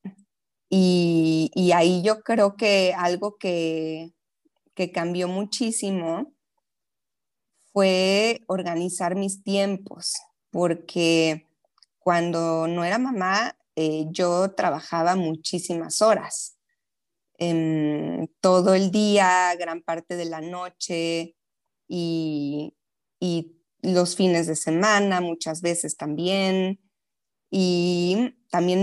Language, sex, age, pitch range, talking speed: Spanish, female, 20-39, 170-210 Hz, 95 wpm